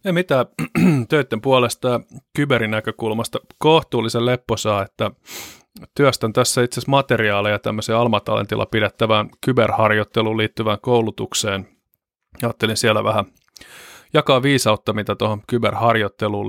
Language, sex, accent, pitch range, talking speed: Finnish, male, native, 110-125 Hz, 100 wpm